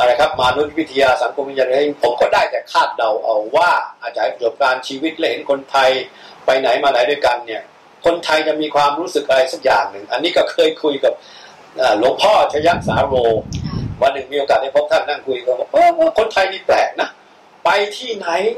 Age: 60-79